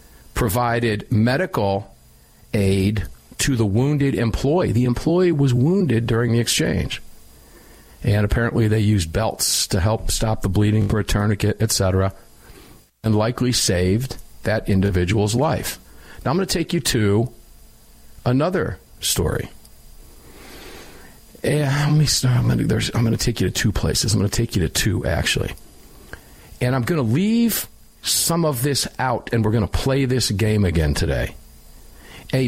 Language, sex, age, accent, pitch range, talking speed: English, male, 50-69, American, 105-150 Hz, 155 wpm